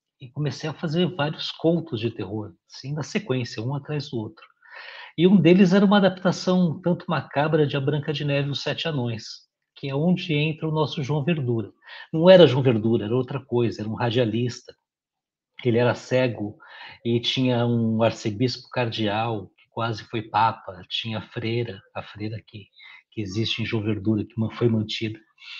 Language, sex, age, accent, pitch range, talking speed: Portuguese, male, 60-79, Brazilian, 110-145 Hz, 175 wpm